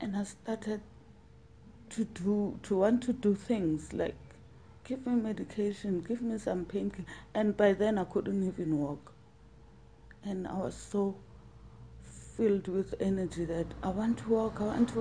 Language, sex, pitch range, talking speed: English, female, 160-210 Hz, 160 wpm